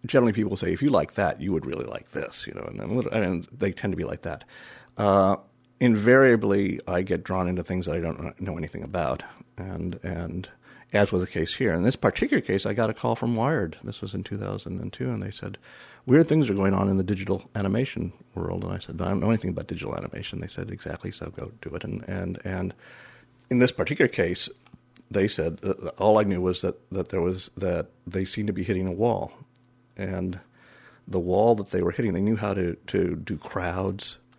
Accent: American